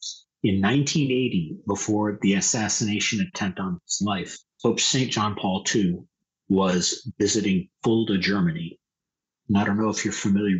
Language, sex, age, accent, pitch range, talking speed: English, male, 40-59, American, 95-125 Hz, 140 wpm